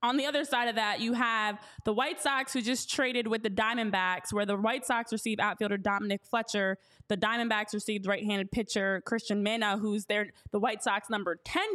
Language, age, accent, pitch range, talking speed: English, 20-39, American, 210-285 Hz, 200 wpm